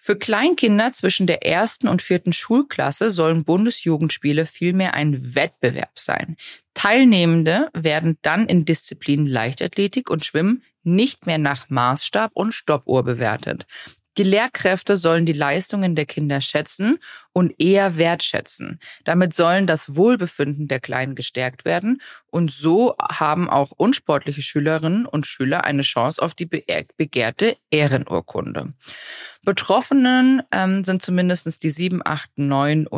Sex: female